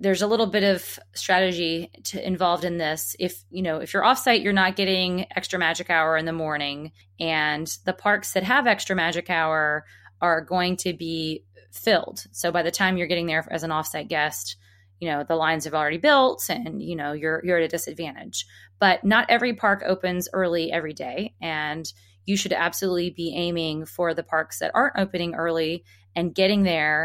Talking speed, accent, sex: 195 wpm, American, female